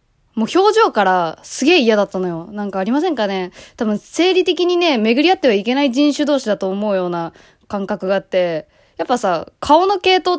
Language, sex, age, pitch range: Japanese, female, 20-39, 190-295 Hz